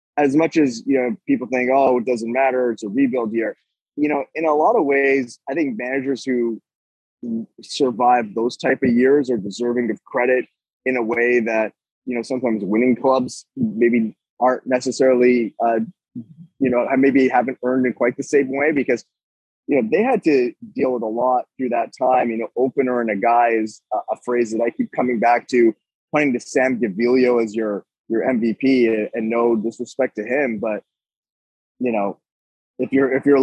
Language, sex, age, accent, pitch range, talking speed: English, male, 20-39, American, 120-135 Hz, 190 wpm